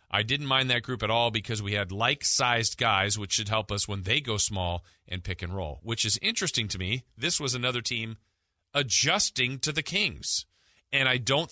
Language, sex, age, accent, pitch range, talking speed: English, male, 40-59, American, 95-125 Hz, 210 wpm